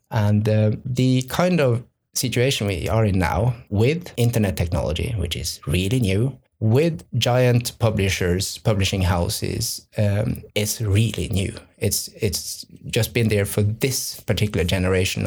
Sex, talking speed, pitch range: male, 140 wpm, 100-120 Hz